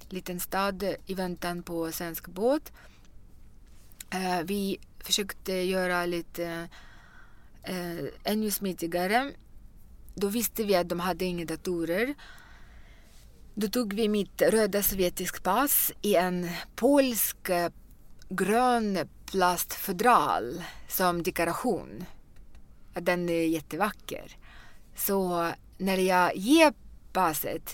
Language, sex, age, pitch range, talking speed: English, female, 20-39, 175-220 Hz, 90 wpm